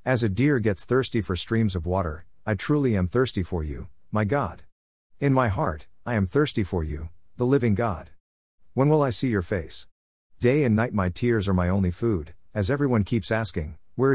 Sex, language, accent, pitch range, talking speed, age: male, English, American, 90-115 Hz, 205 wpm, 50-69